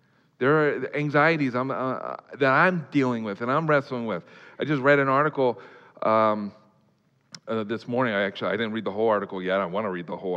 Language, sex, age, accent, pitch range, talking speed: English, male, 40-59, American, 115-155 Hz, 205 wpm